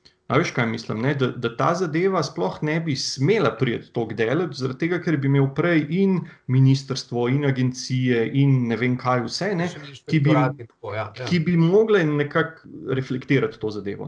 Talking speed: 160 wpm